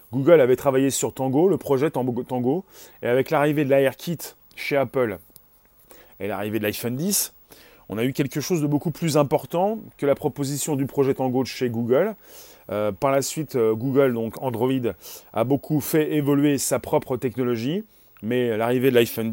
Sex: male